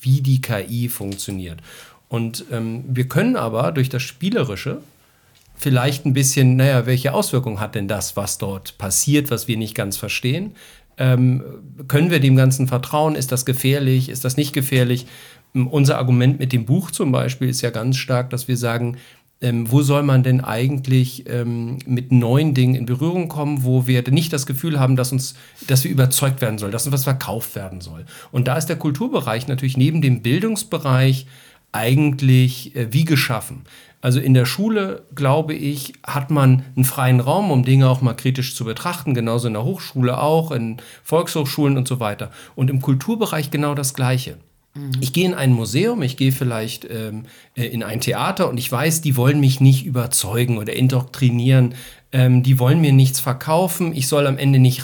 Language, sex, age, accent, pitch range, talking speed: German, male, 40-59, German, 125-140 Hz, 185 wpm